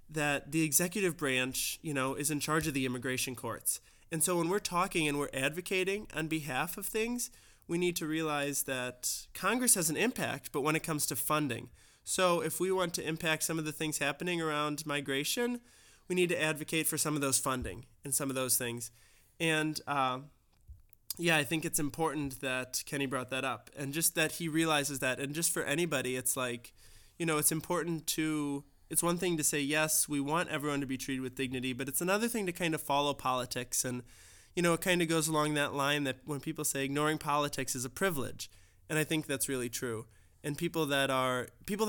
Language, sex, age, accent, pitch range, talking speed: English, male, 20-39, American, 130-160 Hz, 215 wpm